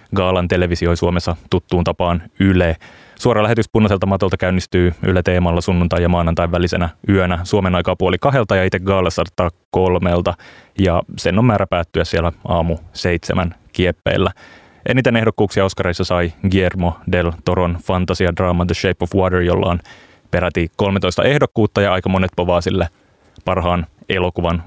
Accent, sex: native, male